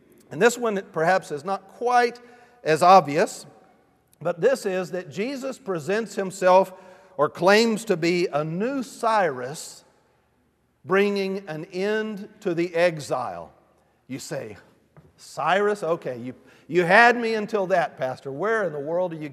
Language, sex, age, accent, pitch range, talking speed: English, male, 50-69, American, 175-220 Hz, 145 wpm